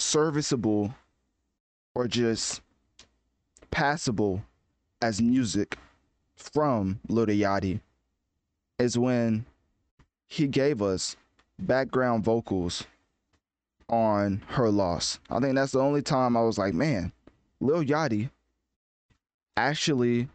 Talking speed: 95 wpm